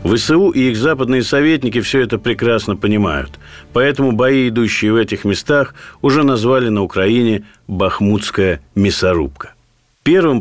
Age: 50-69